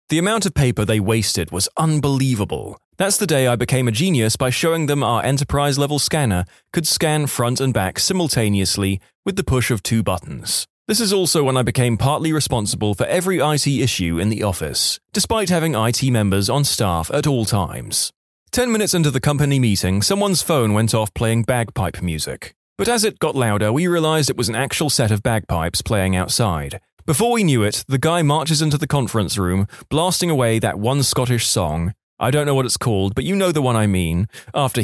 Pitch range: 110-150 Hz